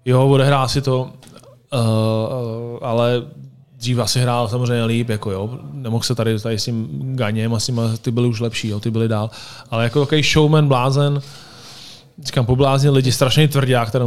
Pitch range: 120-140 Hz